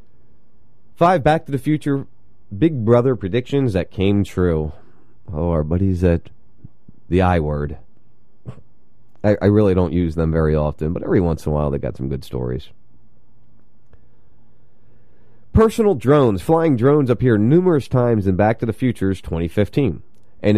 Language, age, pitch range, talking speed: English, 30-49, 90-125 Hz, 150 wpm